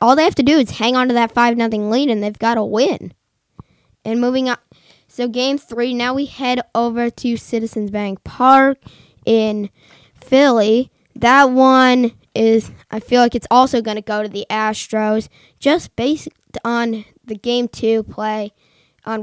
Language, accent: English, American